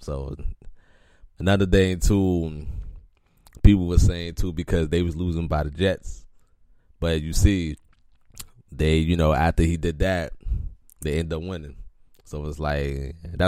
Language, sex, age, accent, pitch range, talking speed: English, male, 20-39, American, 80-95 Hz, 145 wpm